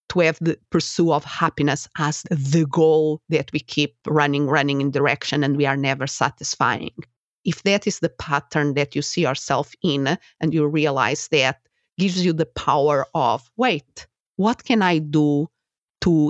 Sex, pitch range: female, 145-175 Hz